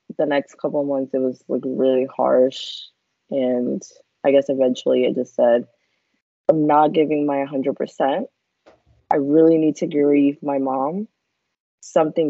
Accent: American